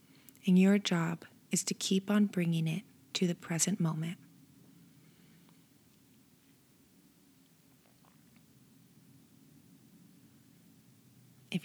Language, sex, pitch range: English, female, 180-200 Hz